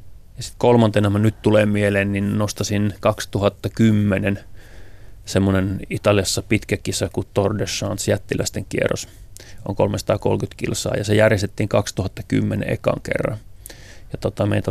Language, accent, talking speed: Finnish, native, 120 wpm